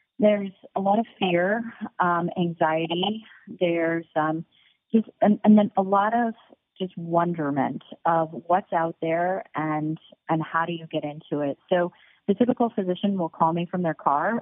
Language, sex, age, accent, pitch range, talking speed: English, female, 30-49, American, 160-185 Hz, 165 wpm